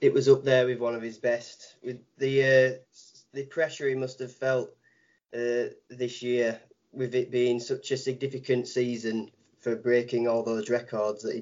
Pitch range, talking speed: 120-140 Hz, 185 wpm